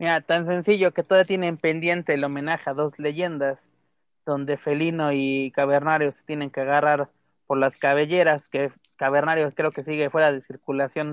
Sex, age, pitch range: male, 30-49, 140-165 Hz